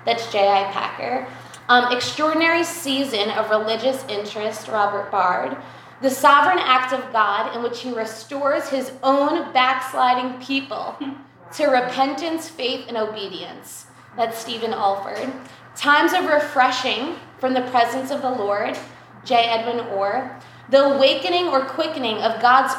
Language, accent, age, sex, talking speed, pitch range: English, American, 20-39, female, 130 wpm, 230-280 Hz